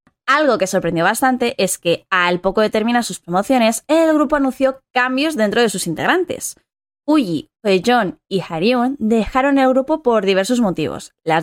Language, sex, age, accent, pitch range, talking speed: Spanish, female, 20-39, Spanish, 195-275 Hz, 165 wpm